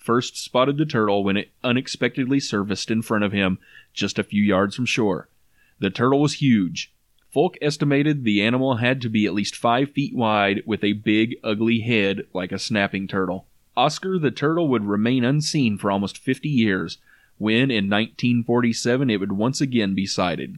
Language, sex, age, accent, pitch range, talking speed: English, male, 30-49, American, 105-140 Hz, 180 wpm